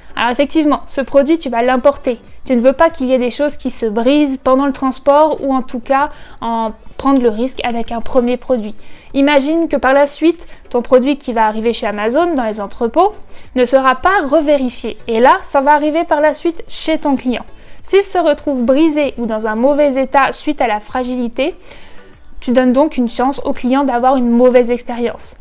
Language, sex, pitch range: French, female, 250-295 Hz